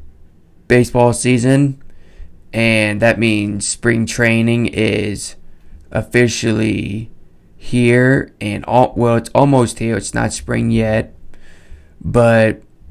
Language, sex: English, male